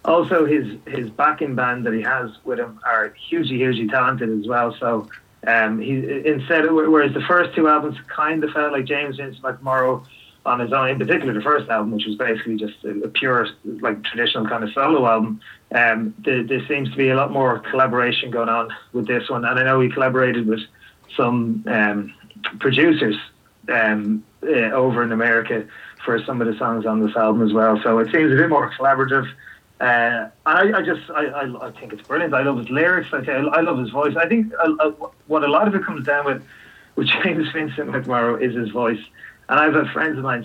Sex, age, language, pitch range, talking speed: male, 20-39, English, 115-145 Hz, 215 wpm